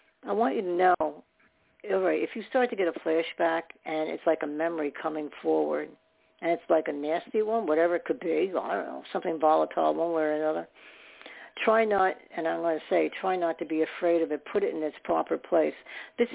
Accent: American